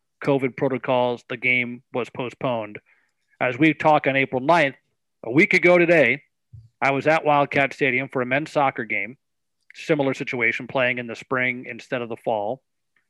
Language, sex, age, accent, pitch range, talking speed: English, male, 40-59, American, 125-150 Hz, 165 wpm